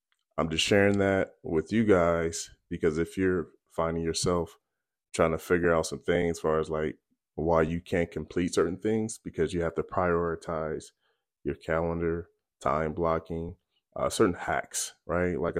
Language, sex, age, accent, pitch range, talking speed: English, male, 20-39, American, 80-95 Hz, 160 wpm